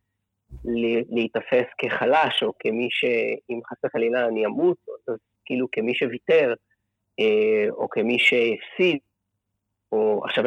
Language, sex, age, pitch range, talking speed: Hebrew, male, 30-49, 105-165 Hz, 110 wpm